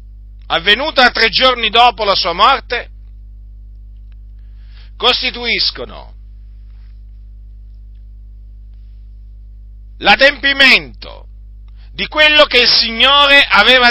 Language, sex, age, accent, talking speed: Italian, male, 50-69, native, 65 wpm